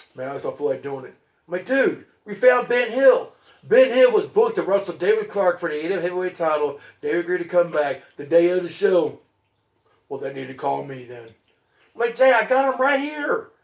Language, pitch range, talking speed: English, 125-210 Hz, 235 wpm